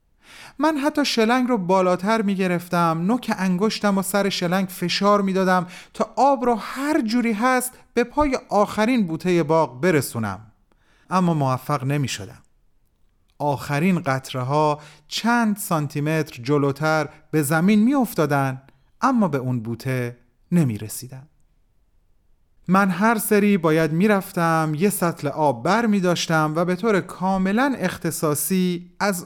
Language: Persian